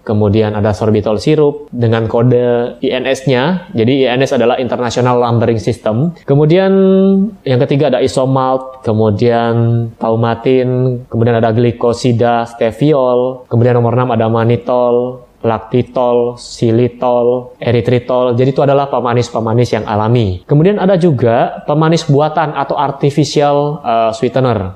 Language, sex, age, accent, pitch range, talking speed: Indonesian, male, 20-39, native, 120-145 Hz, 115 wpm